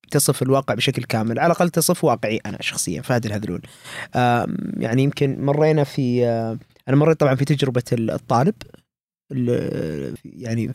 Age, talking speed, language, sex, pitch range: 20-39, 130 wpm, Arabic, male, 125-170 Hz